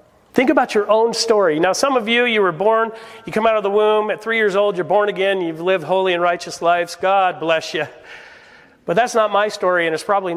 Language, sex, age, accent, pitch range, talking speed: English, male, 40-59, American, 160-200 Hz, 245 wpm